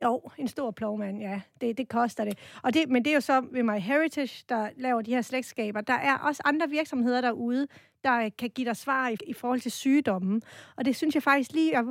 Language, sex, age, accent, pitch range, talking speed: Danish, female, 30-49, native, 220-265 Hz, 235 wpm